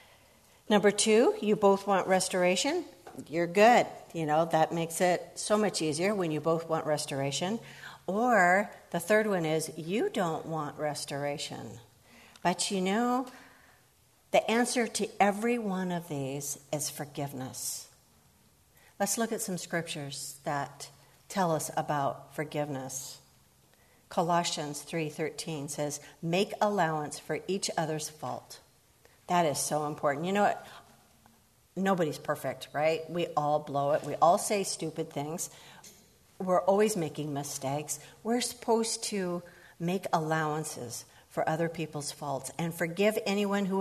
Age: 60-79